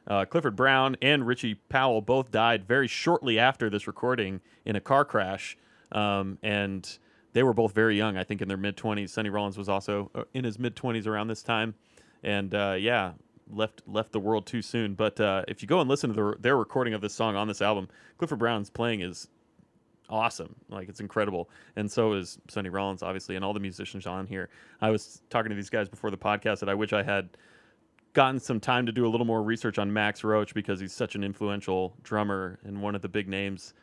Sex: male